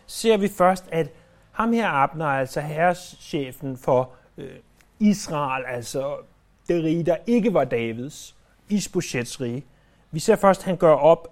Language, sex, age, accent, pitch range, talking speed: Danish, male, 30-49, native, 145-200 Hz, 145 wpm